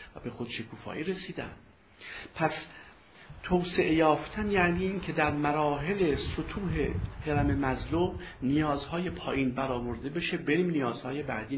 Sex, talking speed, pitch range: male, 115 wpm, 115-155 Hz